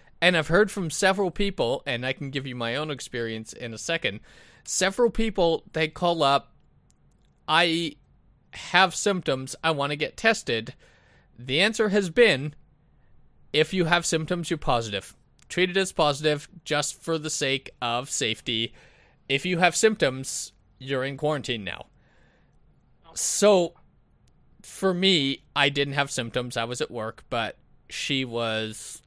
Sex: male